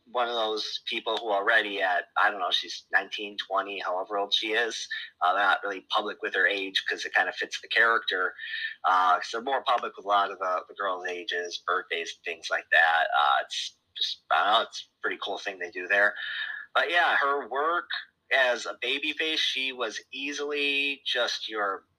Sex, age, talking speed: male, 30-49, 205 wpm